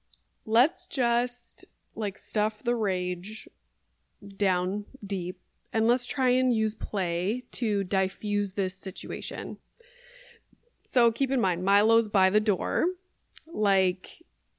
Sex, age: female, 20-39